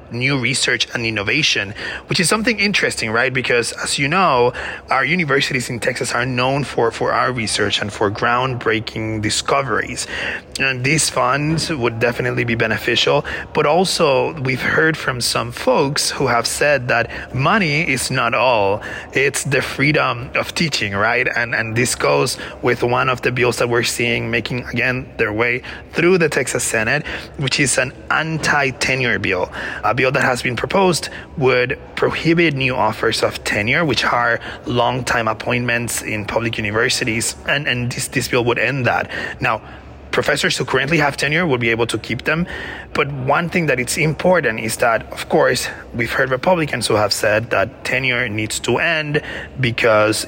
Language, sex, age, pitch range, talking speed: English, male, 30-49, 115-150 Hz, 170 wpm